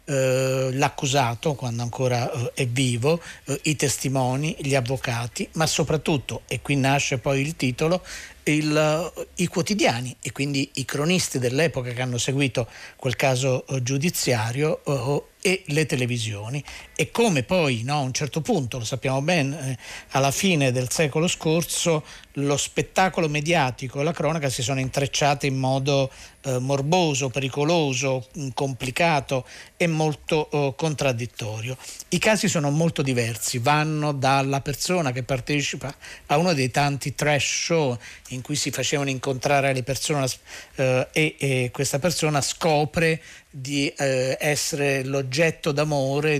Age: 50-69